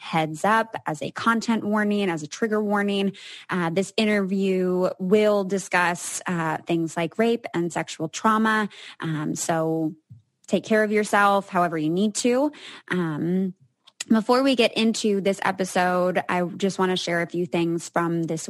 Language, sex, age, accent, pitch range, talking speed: English, female, 20-39, American, 170-210 Hz, 160 wpm